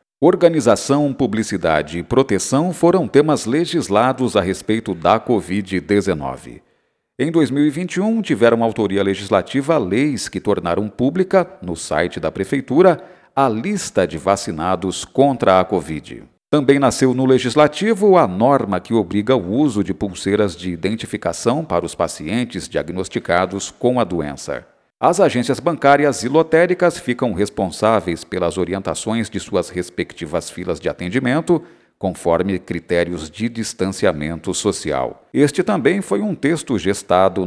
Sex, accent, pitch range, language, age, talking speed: male, Brazilian, 90-135 Hz, Portuguese, 50-69, 125 wpm